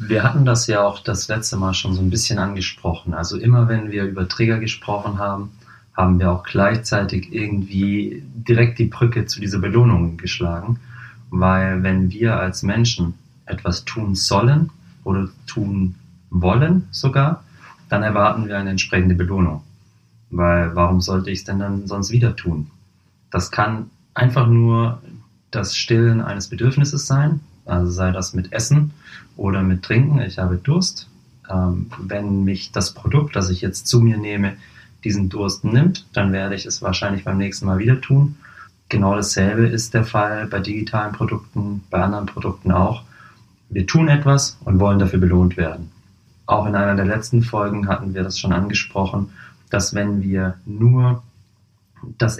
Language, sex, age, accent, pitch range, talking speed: German, male, 30-49, German, 95-120 Hz, 160 wpm